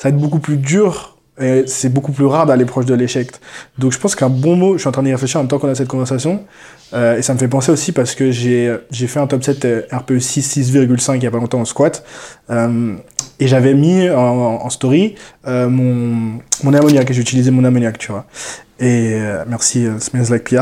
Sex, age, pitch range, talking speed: male, 20-39, 125-150 Hz, 235 wpm